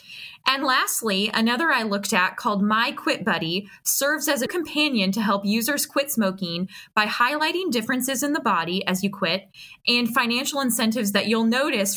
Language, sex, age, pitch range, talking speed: English, female, 20-39, 195-260 Hz, 170 wpm